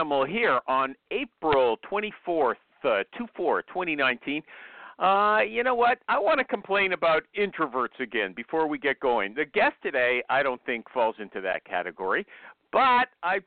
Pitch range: 150-240 Hz